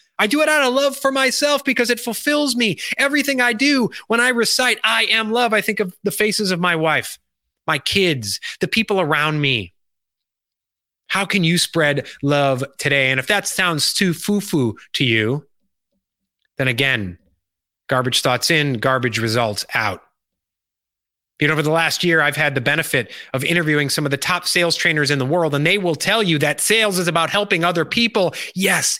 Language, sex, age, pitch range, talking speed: English, male, 30-49, 140-225 Hz, 190 wpm